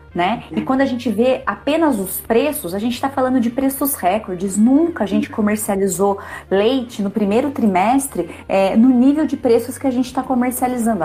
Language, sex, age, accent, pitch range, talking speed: Portuguese, female, 30-49, Brazilian, 185-240 Hz, 185 wpm